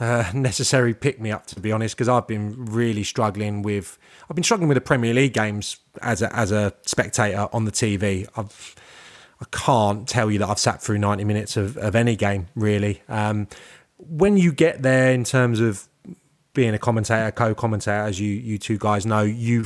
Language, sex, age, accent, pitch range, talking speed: English, male, 20-39, British, 105-125 Hz, 200 wpm